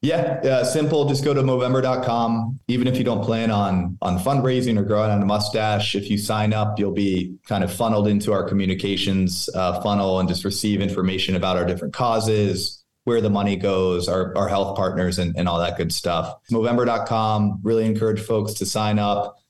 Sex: male